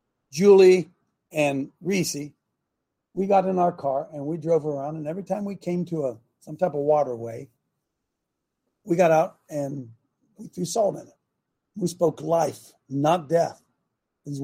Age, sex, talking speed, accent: 50-69, male, 160 wpm, American